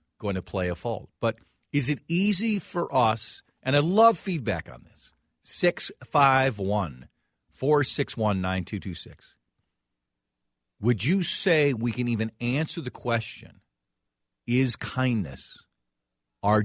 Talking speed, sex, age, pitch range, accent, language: 110 wpm, male, 50-69, 80-120 Hz, American, English